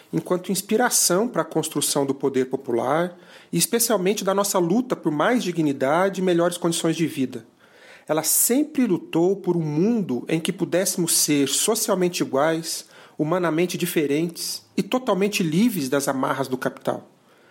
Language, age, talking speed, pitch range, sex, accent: Portuguese, 40-59, 145 wpm, 145-190 Hz, male, Brazilian